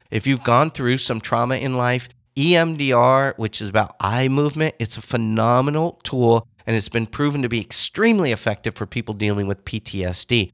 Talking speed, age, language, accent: 175 wpm, 40-59, English, American